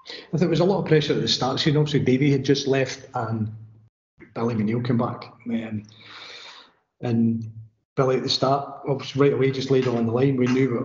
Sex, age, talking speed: male, 40-59, 225 wpm